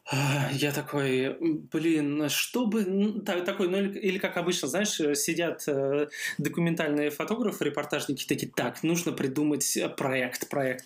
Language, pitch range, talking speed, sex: Russian, 145-175 Hz, 110 wpm, male